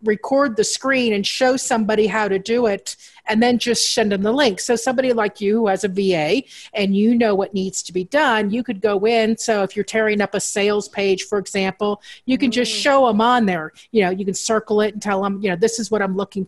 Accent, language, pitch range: American, English, 190-225 Hz